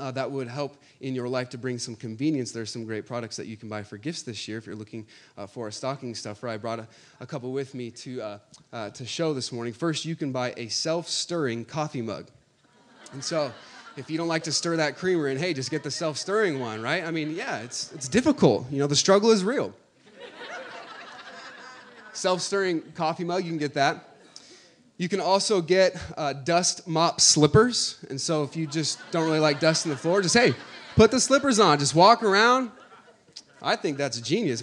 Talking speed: 215 wpm